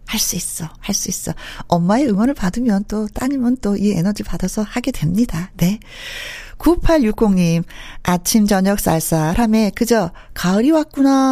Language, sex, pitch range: Korean, female, 180-255 Hz